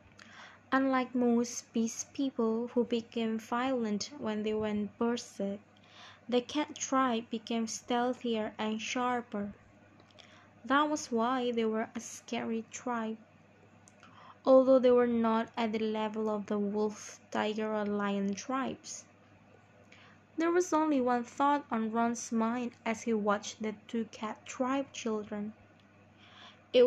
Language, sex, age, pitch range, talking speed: Indonesian, female, 20-39, 205-250 Hz, 125 wpm